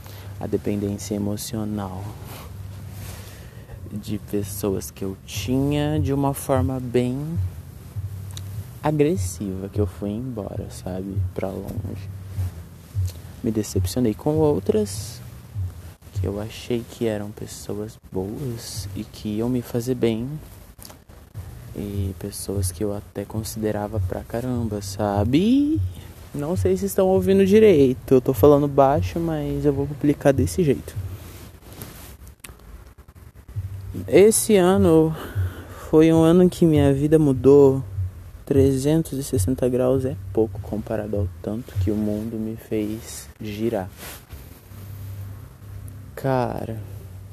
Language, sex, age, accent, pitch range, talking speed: Portuguese, male, 20-39, Brazilian, 95-125 Hz, 110 wpm